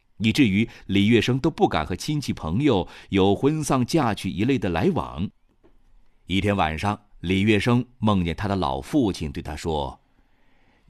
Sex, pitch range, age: male, 80-120 Hz, 50-69